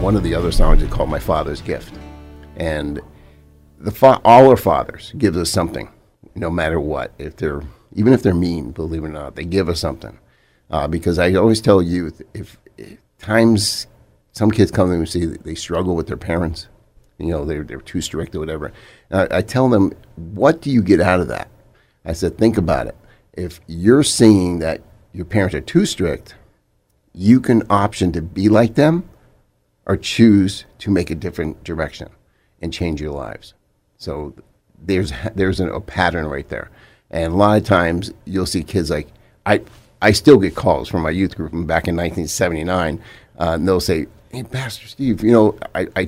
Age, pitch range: 50-69, 80-105 Hz